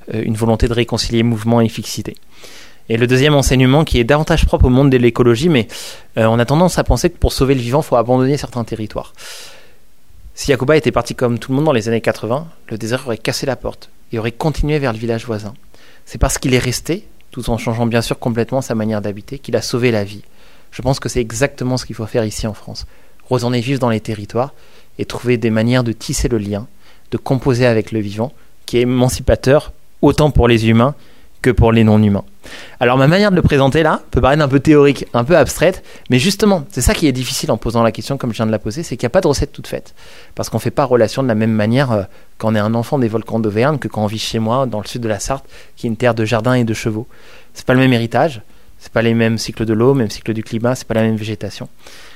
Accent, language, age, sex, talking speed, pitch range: French, French, 30-49, male, 260 wpm, 110-135 Hz